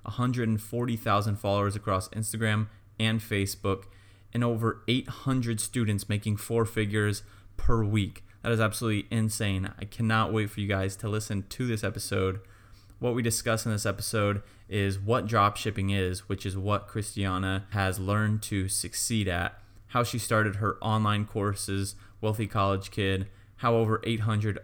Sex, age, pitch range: male, 20-39, 100-110 Hz